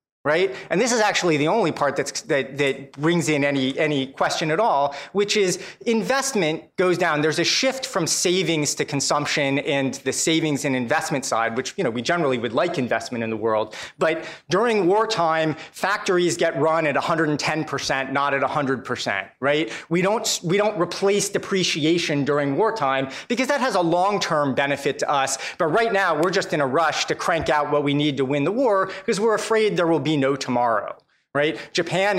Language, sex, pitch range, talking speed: English, male, 140-180 Hz, 190 wpm